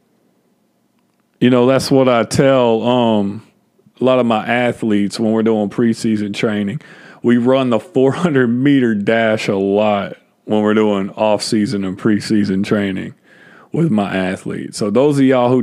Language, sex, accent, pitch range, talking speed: English, male, American, 110-130 Hz, 155 wpm